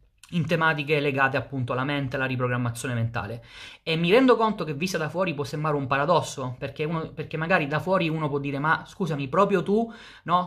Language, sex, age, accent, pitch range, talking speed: Italian, male, 20-39, native, 145-170 Hz, 200 wpm